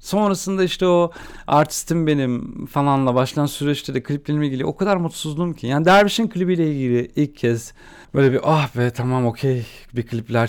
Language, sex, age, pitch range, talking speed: Turkish, male, 40-59, 120-170 Hz, 170 wpm